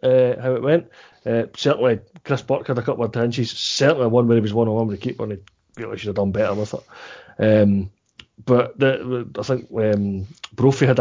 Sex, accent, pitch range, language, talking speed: male, British, 110-135 Hz, English, 240 wpm